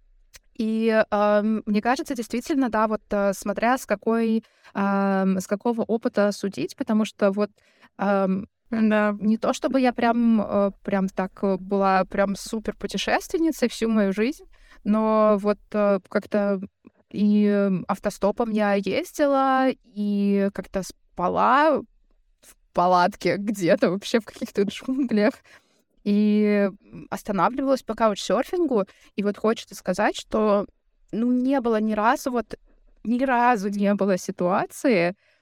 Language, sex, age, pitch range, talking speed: Russian, female, 20-39, 195-235 Hz, 115 wpm